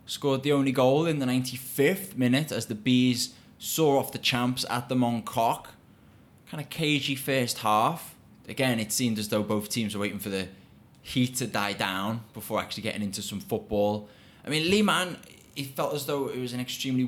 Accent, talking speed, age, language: British, 200 wpm, 20-39, English